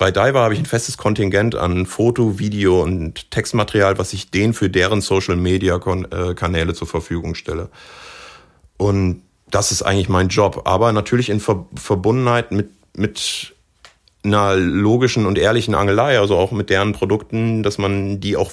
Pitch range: 95-110 Hz